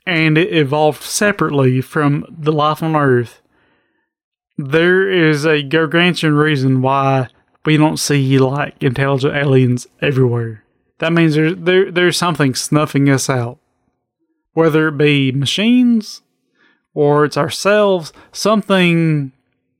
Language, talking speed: English, 120 wpm